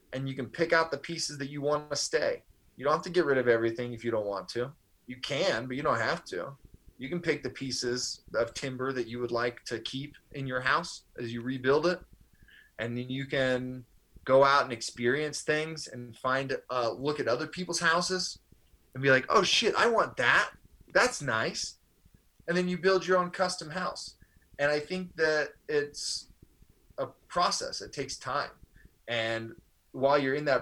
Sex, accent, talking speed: male, American, 200 wpm